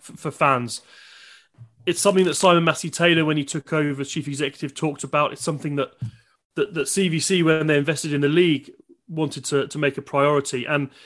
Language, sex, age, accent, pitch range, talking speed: English, male, 30-49, British, 135-160 Hz, 195 wpm